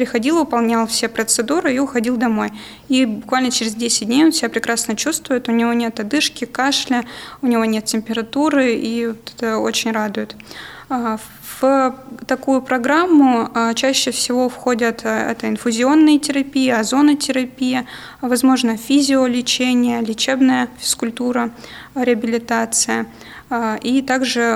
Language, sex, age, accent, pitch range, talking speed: Russian, female, 20-39, native, 225-255 Hz, 110 wpm